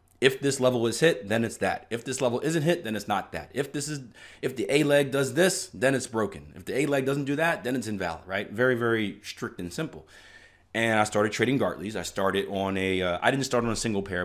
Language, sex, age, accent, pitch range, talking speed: English, male, 30-49, American, 90-115 Hz, 260 wpm